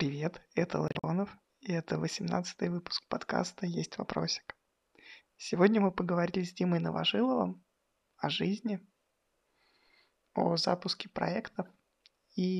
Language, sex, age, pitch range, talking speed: Russian, male, 20-39, 175-225 Hz, 105 wpm